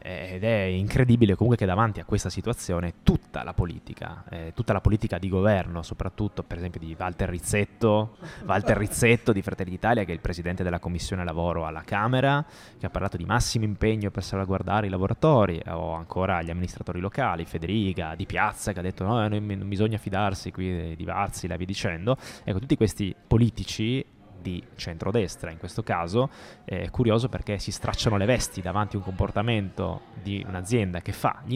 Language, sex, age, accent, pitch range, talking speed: Italian, male, 20-39, native, 90-110 Hz, 180 wpm